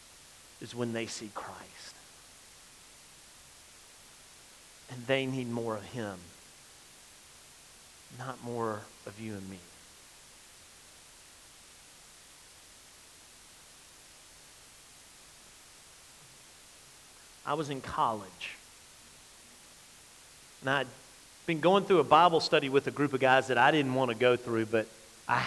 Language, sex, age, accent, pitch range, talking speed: English, male, 40-59, American, 110-170 Hz, 100 wpm